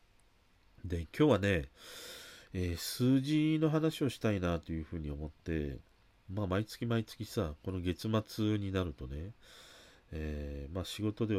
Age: 40-59